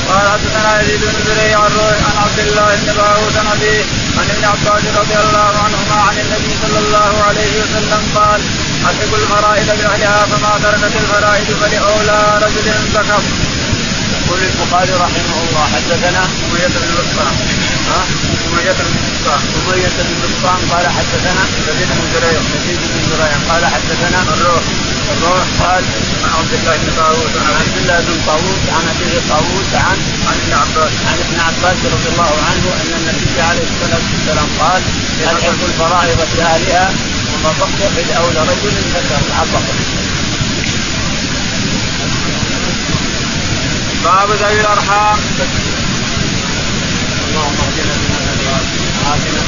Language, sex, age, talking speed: Arabic, male, 20-39, 100 wpm